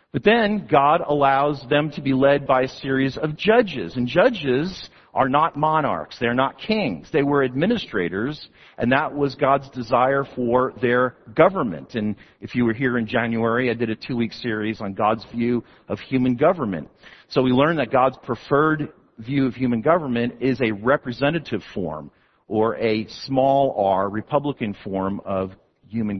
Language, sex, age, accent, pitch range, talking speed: English, male, 50-69, American, 120-195 Hz, 165 wpm